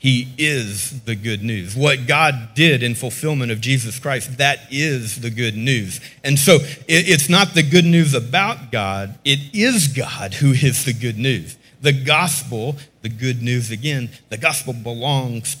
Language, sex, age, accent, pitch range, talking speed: English, male, 40-59, American, 115-150 Hz, 170 wpm